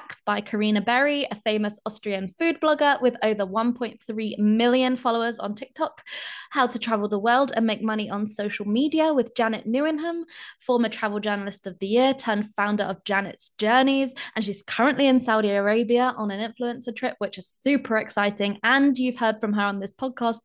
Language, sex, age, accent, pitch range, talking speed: English, female, 10-29, British, 210-250 Hz, 180 wpm